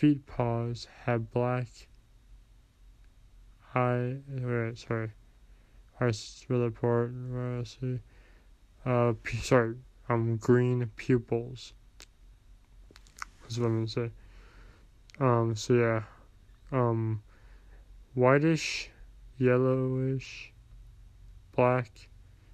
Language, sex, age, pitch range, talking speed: English, male, 20-39, 105-125 Hz, 70 wpm